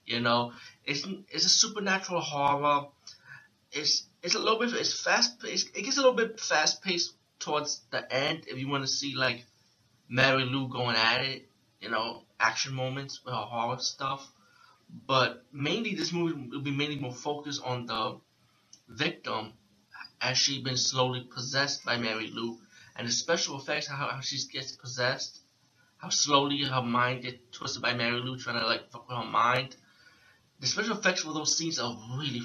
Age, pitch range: 20-39, 120-150 Hz